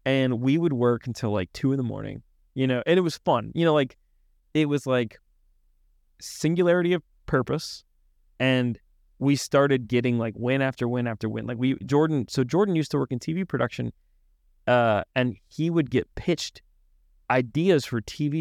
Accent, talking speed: American, 180 wpm